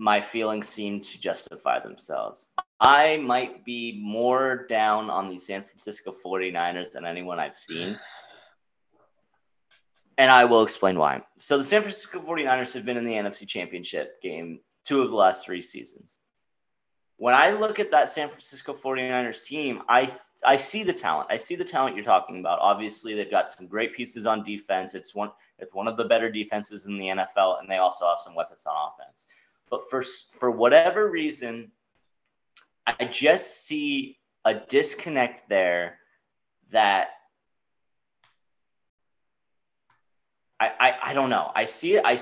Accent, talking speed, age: American, 160 wpm, 20-39